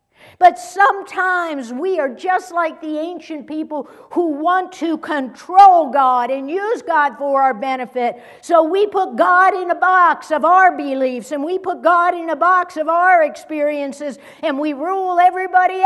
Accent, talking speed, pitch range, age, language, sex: American, 165 wpm, 255-345 Hz, 60-79, English, female